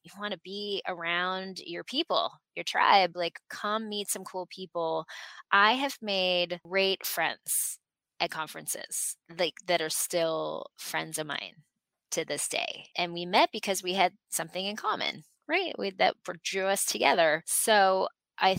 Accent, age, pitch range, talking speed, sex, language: American, 20-39, 160-195 Hz, 160 wpm, female, English